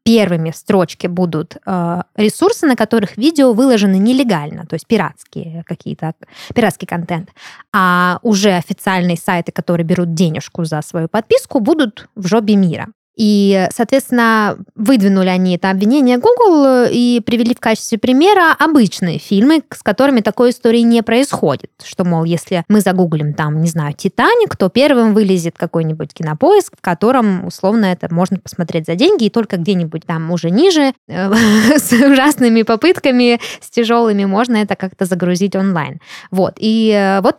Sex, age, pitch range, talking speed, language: female, 20-39, 185-245 Hz, 145 wpm, Russian